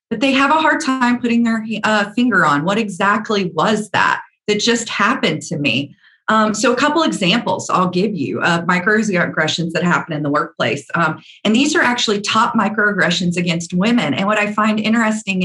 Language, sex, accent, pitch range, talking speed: English, female, American, 170-220 Hz, 190 wpm